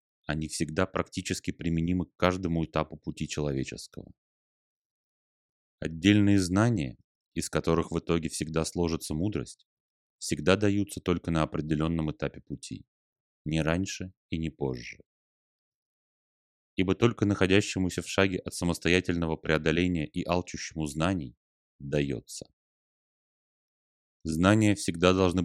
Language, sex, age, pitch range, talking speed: Russian, male, 30-49, 75-95 Hz, 105 wpm